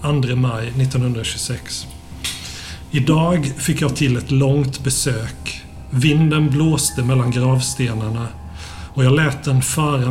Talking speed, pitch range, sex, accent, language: 115 wpm, 115-135 Hz, male, native, Swedish